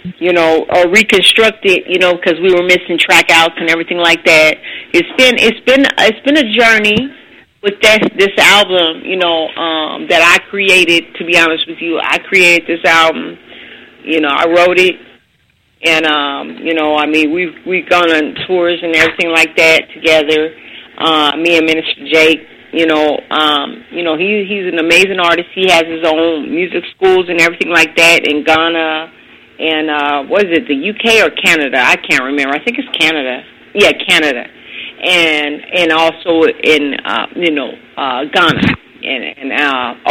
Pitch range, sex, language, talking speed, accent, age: 155-180 Hz, female, English, 180 wpm, American, 40-59